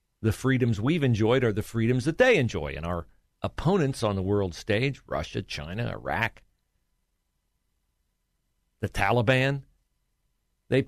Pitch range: 90-125 Hz